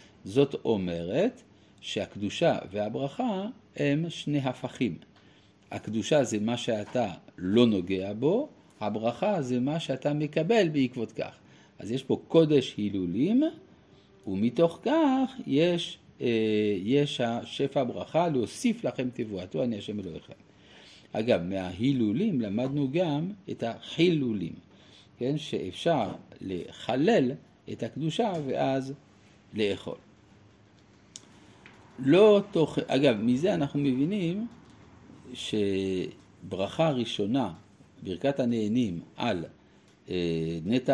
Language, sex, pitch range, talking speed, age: Hebrew, male, 100-145 Hz, 95 wpm, 50-69